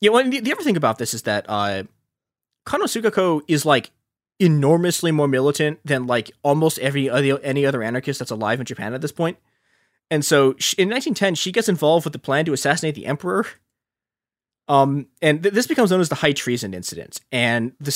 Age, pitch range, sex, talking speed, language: 20-39, 130-180 Hz, male, 205 wpm, English